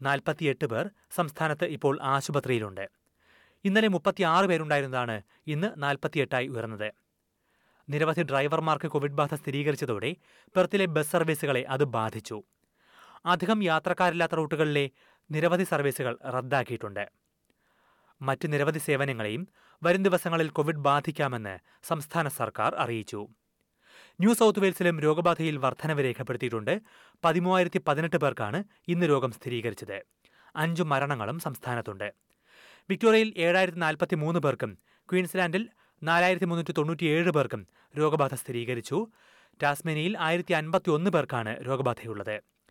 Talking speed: 100 wpm